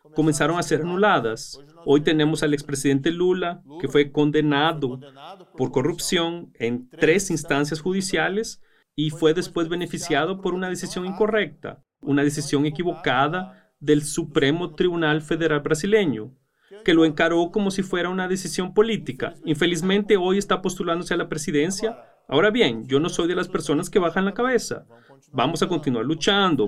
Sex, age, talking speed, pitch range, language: male, 40-59, 150 wpm, 145-185 Hz, Spanish